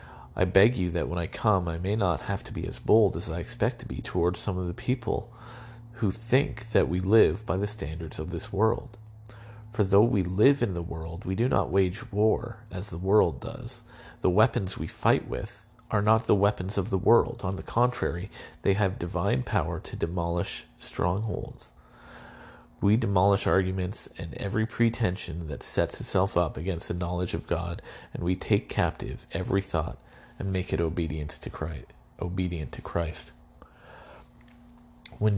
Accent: American